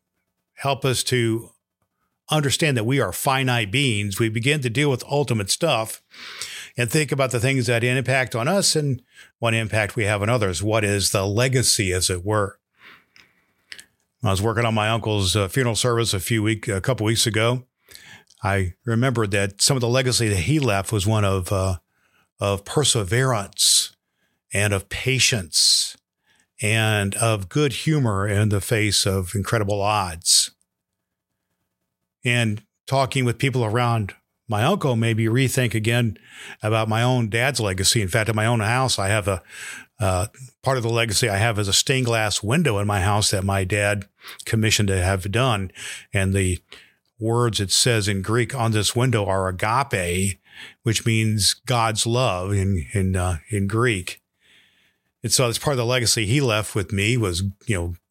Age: 50-69